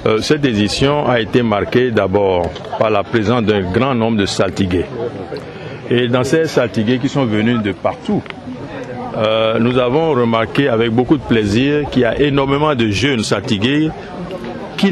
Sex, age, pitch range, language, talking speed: male, 60-79, 115-155 Hz, English, 155 wpm